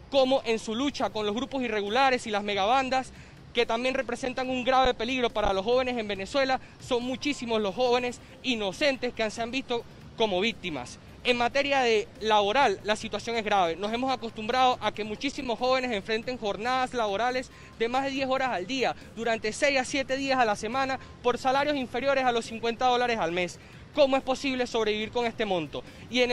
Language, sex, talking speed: Spanish, male, 190 wpm